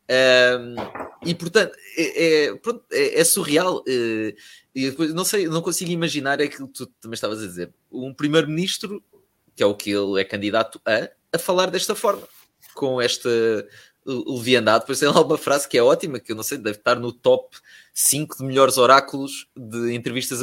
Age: 20-39